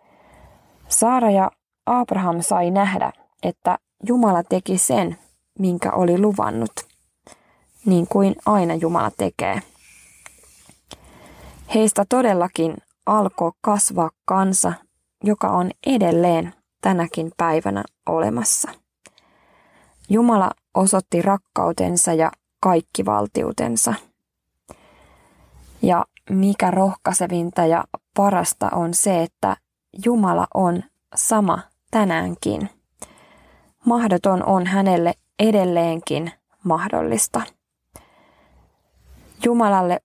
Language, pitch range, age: Finnish, 165-205 Hz, 20-39